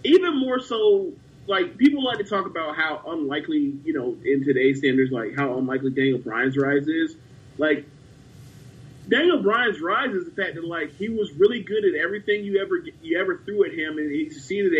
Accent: American